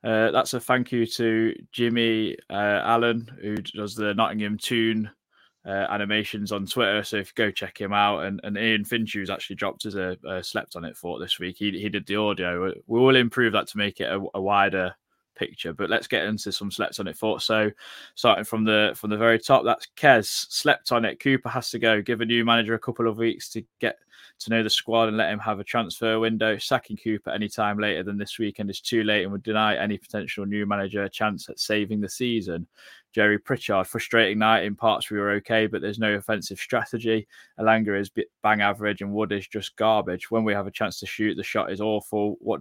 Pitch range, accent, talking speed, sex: 105-115 Hz, British, 230 wpm, male